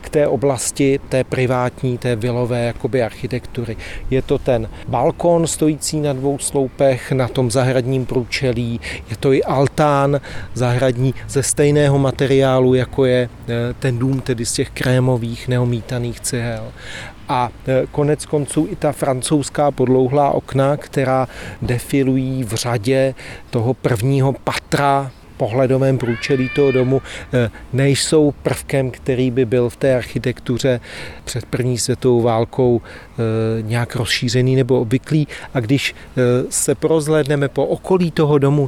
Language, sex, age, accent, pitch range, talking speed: Czech, male, 40-59, native, 120-140 Hz, 125 wpm